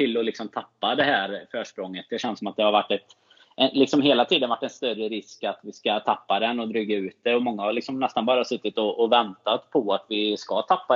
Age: 20-39